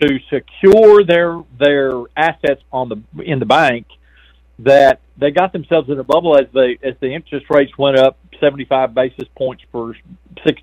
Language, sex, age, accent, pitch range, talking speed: English, male, 50-69, American, 125-160 Hz, 175 wpm